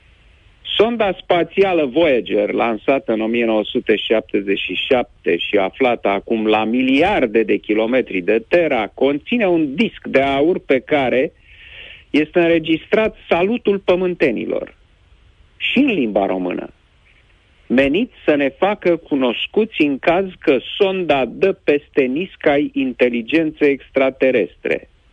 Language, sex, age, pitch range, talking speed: Romanian, male, 40-59, 115-185 Hz, 105 wpm